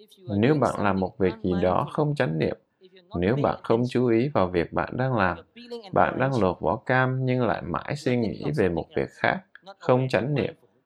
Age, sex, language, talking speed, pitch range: 20-39, male, Vietnamese, 205 wpm, 110-155 Hz